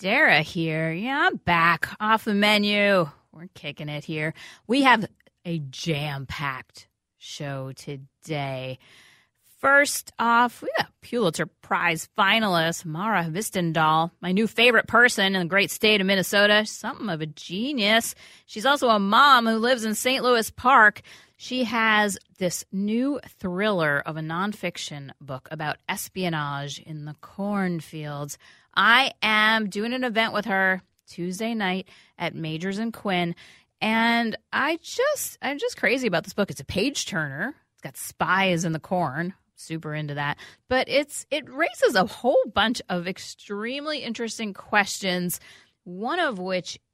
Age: 30-49